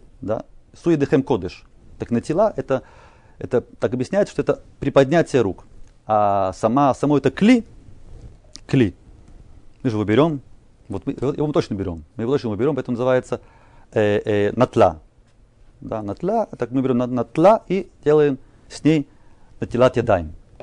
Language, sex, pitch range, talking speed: Russian, male, 110-140 Hz, 150 wpm